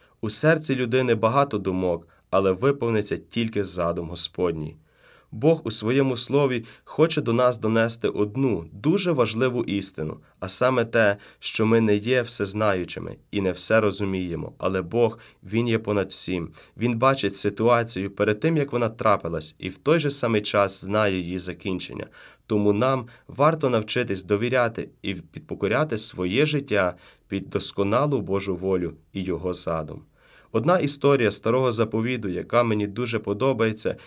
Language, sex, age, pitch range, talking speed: Ukrainian, male, 30-49, 95-125 Hz, 145 wpm